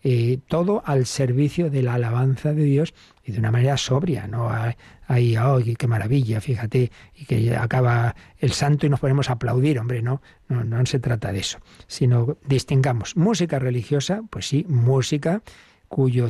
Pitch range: 120-150 Hz